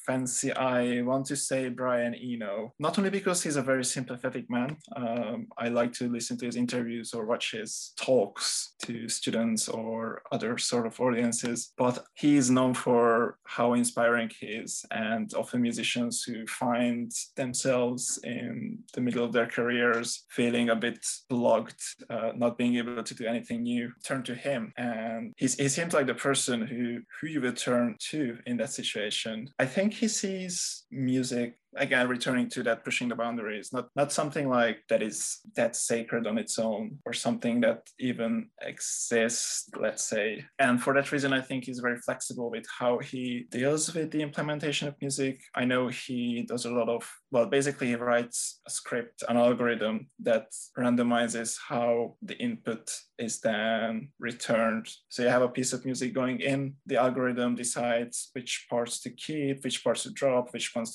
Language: English